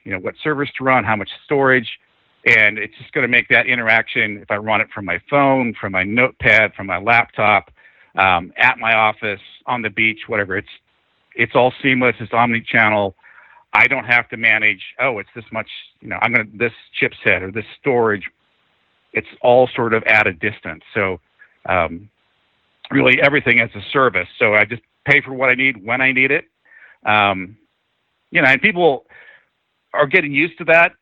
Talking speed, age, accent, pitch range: 190 wpm, 50-69, American, 105-130 Hz